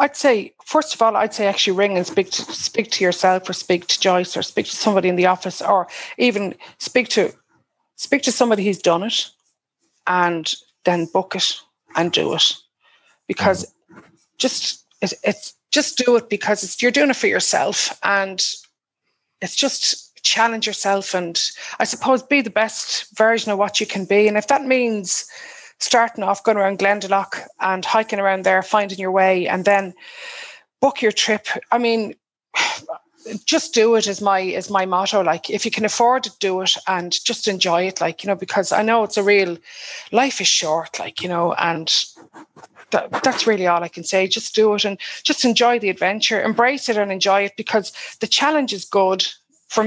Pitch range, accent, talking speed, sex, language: 190-235 Hz, Irish, 190 wpm, female, English